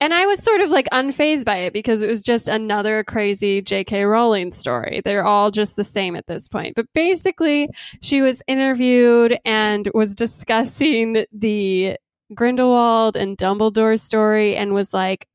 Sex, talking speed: female, 165 wpm